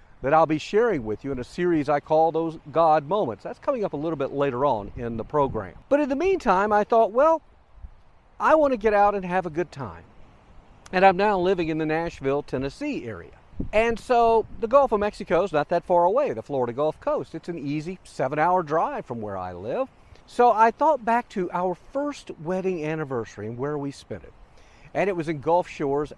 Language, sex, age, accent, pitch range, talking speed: English, male, 50-69, American, 130-195 Hz, 220 wpm